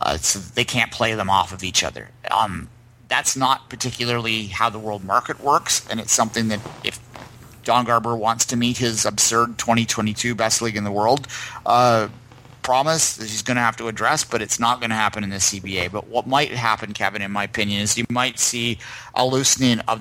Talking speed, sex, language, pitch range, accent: 210 wpm, male, English, 105-120 Hz, American